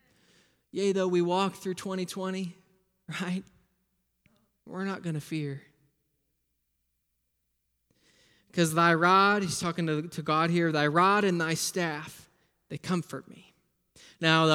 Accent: American